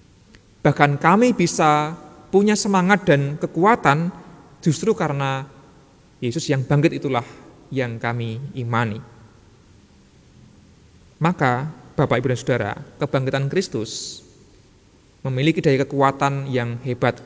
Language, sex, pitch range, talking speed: Indonesian, male, 120-145 Hz, 95 wpm